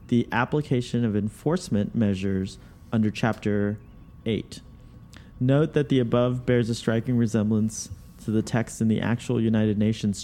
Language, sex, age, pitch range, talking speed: English, male, 30-49, 105-125 Hz, 140 wpm